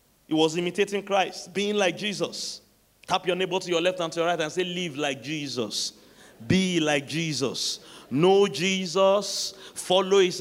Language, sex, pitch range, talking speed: English, male, 160-205 Hz, 165 wpm